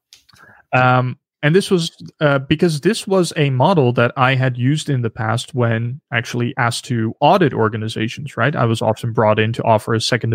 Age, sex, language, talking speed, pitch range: 20-39, male, English, 190 wpm, 115-145 Hz